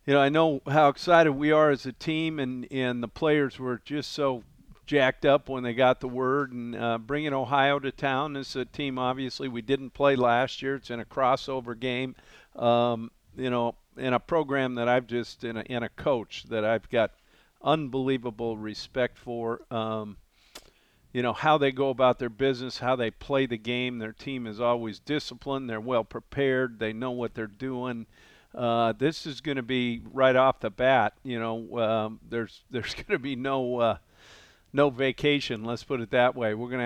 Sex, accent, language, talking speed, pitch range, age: male, American, English, 200 wpm, 120-135 Hz, 50-69